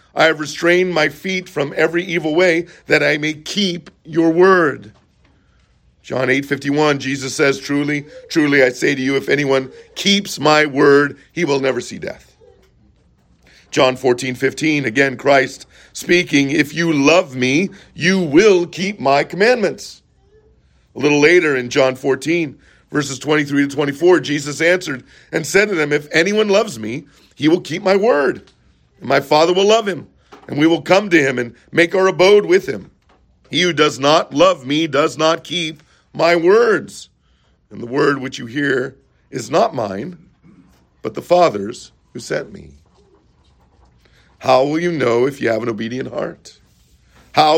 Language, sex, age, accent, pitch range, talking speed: English, male, 50-69, American, 135-170 Hz, 165 wpm